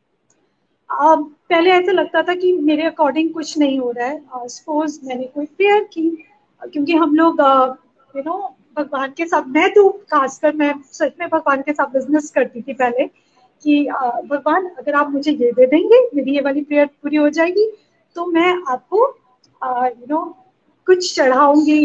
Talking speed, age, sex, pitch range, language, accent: 165 wpm, 30-49, female, 285-385 Hz, Hindi, native